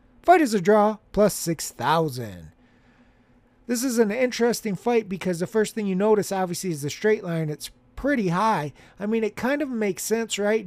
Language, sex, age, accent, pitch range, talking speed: English, male, 30-49, American, 170-220 Hz, 185 wpm